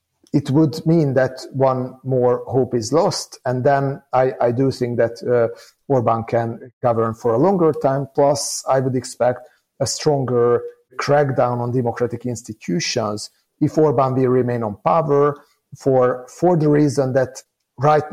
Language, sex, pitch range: English, male, 120-145 Hz